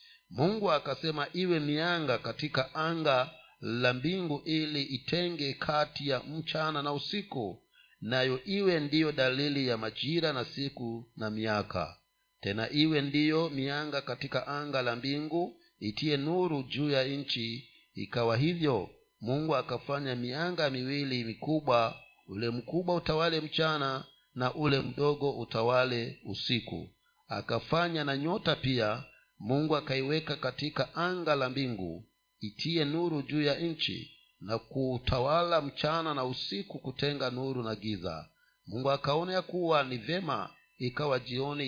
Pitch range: 125-160 Hz